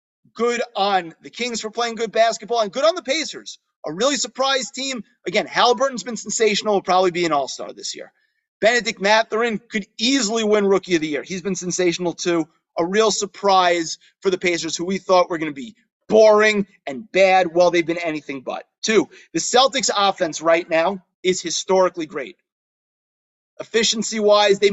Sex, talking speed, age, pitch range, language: male, 175 wpm, 30-49, 165-205 Hz, English